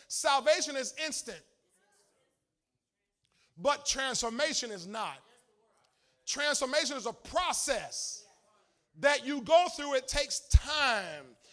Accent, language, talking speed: American, English, 95 wpm